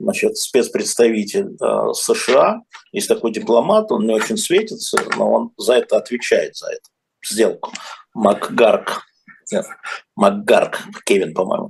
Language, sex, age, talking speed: Russian, male, 50-69, 120 wpm